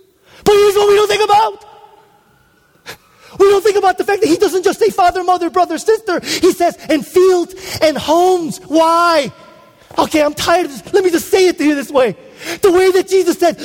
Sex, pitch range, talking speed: male, 315-375 Hz, 210 wpm